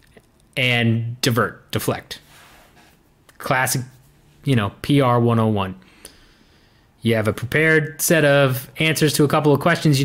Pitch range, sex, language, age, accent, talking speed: 115-155 Hz, male, English, 30-49, American, 125 wpm